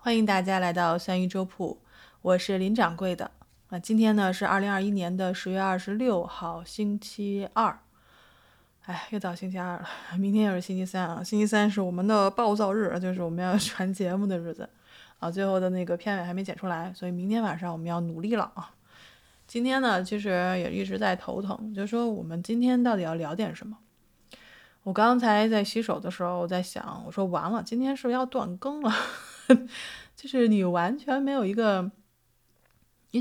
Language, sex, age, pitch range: Chinese, female, 20-39, 180-220 Hz